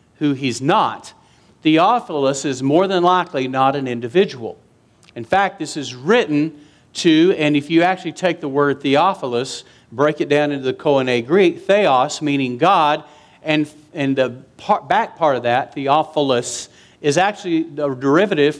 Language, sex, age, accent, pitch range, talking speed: English, male, 50-69, American, 125-160 Hz, 150 wpm